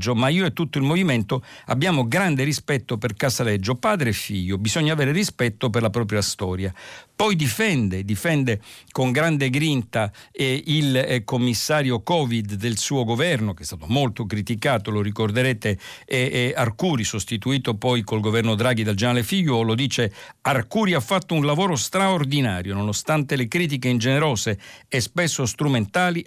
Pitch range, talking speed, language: 115-145 Hz, 155 wpm, Italian